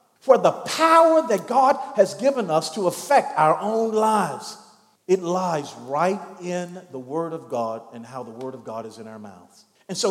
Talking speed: 195 wpm